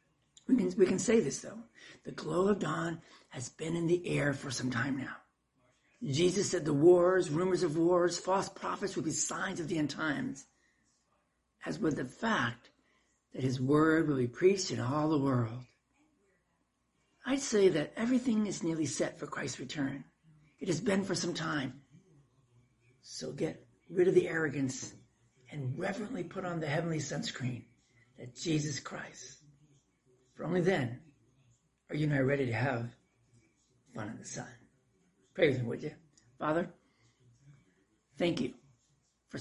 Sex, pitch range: male, 125-165 Hz